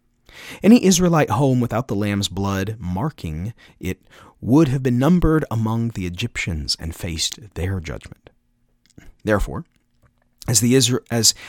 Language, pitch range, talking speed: English, 100-150 Hz, 120 wpm